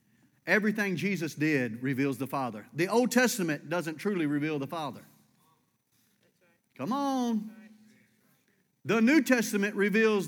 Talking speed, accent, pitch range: 115 wpm, American, 165-230 Hz